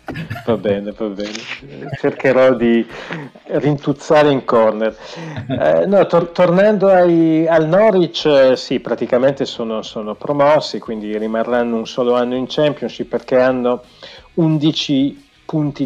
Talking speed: 125 wpm